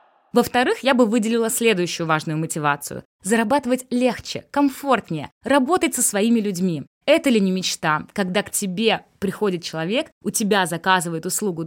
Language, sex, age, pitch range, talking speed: Russian, female, 20-39, 175-245 Hz, 140 wpm